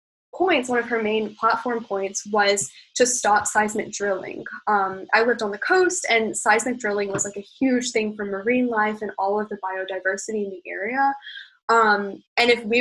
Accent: American